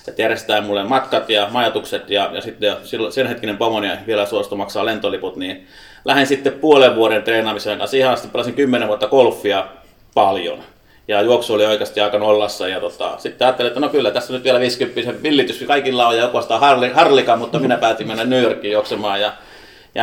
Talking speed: 190 wpm